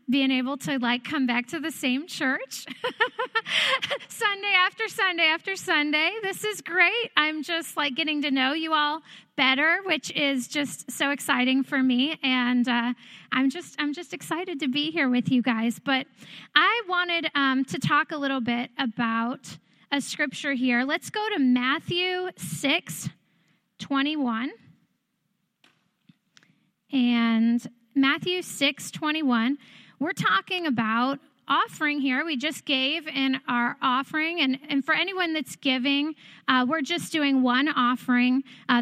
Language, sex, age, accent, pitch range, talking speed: English, female, 10-29, American, 255-320 Hz, 145 wpm